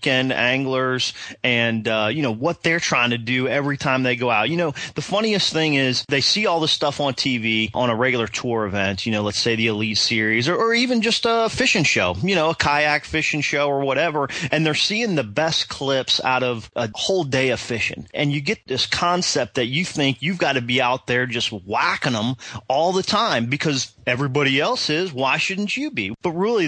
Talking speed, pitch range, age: 220 wpm, 120-155 Hz, 30-49